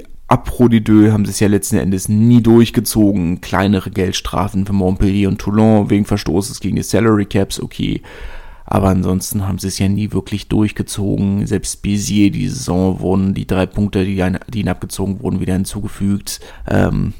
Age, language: 30-49, German